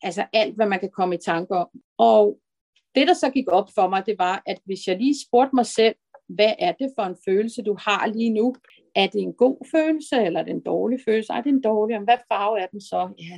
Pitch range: 200-255 Hz